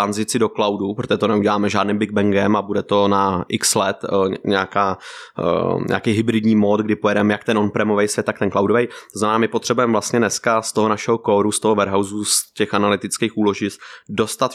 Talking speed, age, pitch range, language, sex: 180 wpm, 20-39, 100-110 Hz, Czech, male